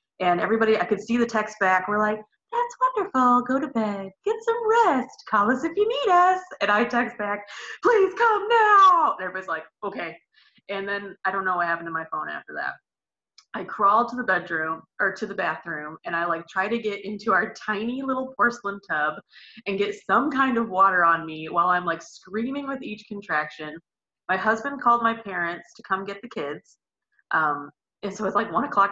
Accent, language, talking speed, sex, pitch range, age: American, English, 210 wpm, female, 180-260 Hz, 20-39